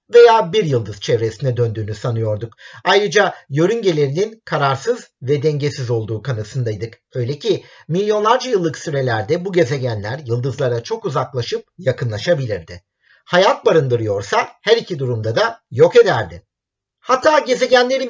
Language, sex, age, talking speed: Turkish, male, 50-69, 115 wpm